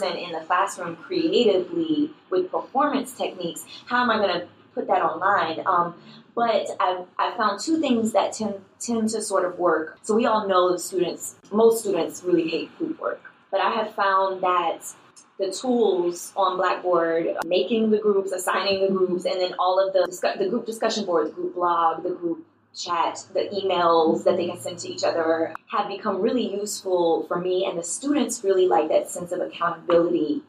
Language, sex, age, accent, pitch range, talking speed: English, female, 20-39, American, 175-215 Hz, 185 wpm